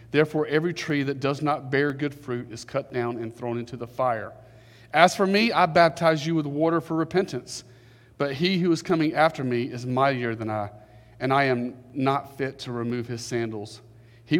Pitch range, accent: 115-140 Hz, American